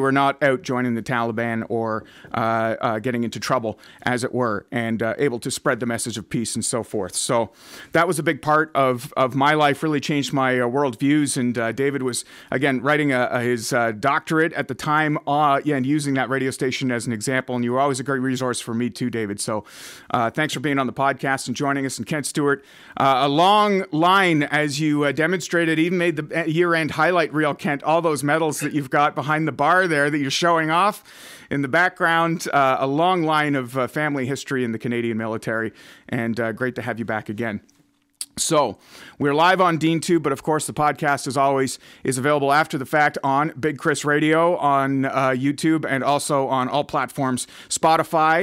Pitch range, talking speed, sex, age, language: 125-155 Hz, 215 wpm, male, 40-59, English